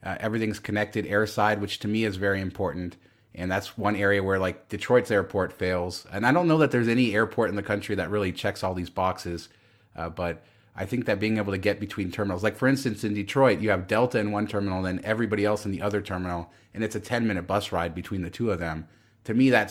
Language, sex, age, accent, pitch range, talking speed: English, male, 30-49, American, 90-110 Hz, 245 wpm